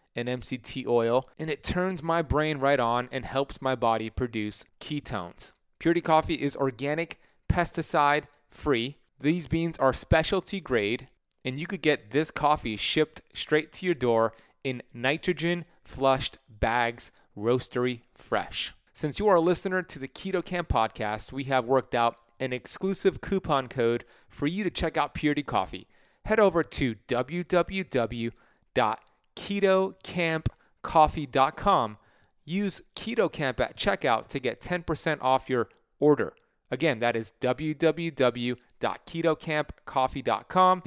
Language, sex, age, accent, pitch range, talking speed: English, male, 30-49, American, 125-165 Hz, 125 wpm